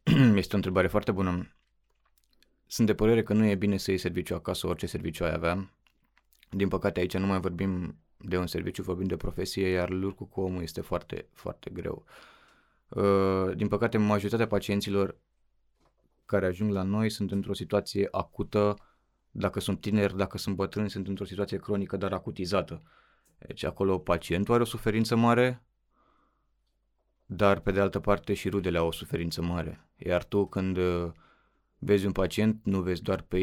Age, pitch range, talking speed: 20-39, 95-105 Hz, 165 wpm